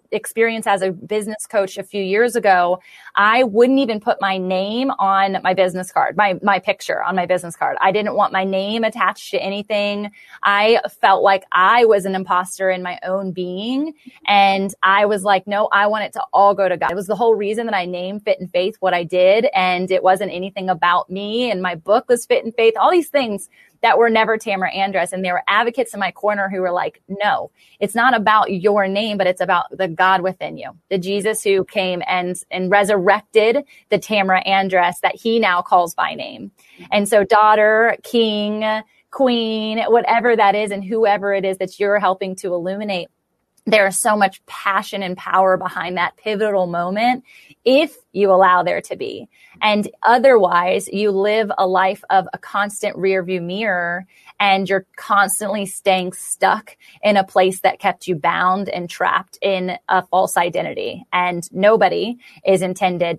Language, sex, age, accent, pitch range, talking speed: English, female, 20-39, American, 185-215 Hz, 190 wpm